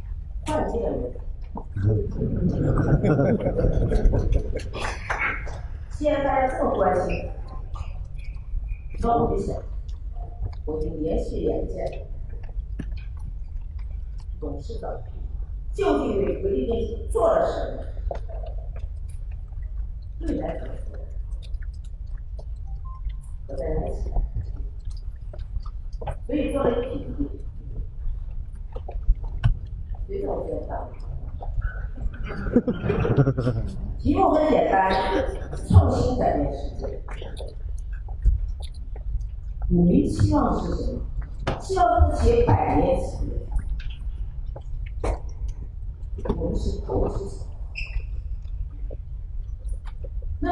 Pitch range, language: 75-90 Hz, Chinese